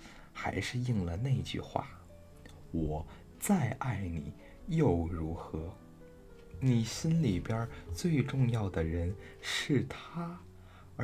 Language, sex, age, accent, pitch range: Chinese, male, 20-39, native, 80-110 Hz